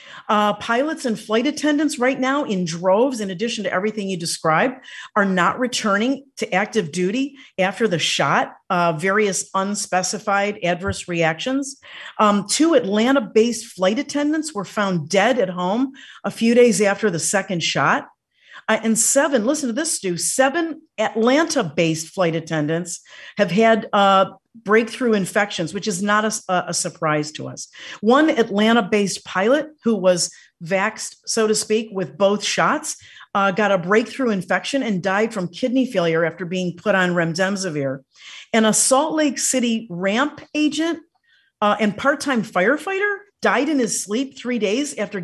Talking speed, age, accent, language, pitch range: 155 wpm, 50-69, American, English, 185-235 Hz